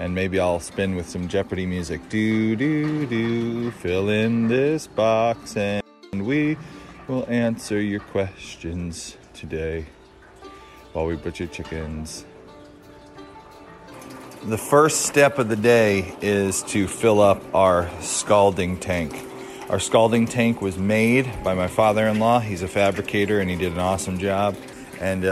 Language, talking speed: English, 135 wpm